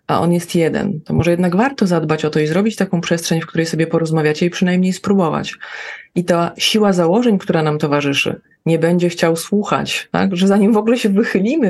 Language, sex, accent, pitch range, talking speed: Polish, female, native, 160-190 Hz, 205 wpm